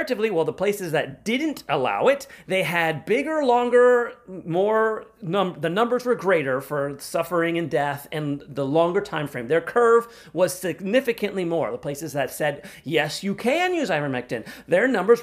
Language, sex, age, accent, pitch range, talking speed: English, male, 30-49, American, 165-245 Hz, 165 wpm